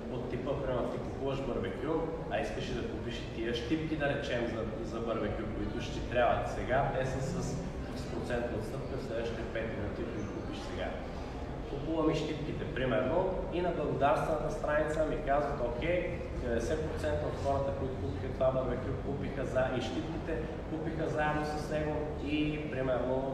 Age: 20-39